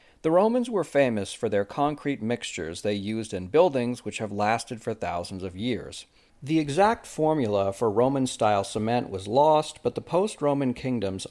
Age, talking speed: 40-59, 165 wpm